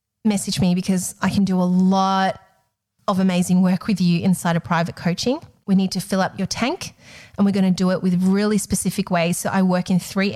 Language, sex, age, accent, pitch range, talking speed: English, female, 30-49, Australian, 180-215 Hz, 225 wpm